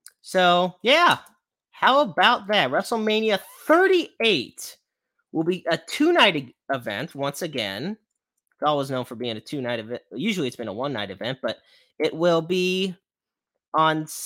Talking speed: 140 wpm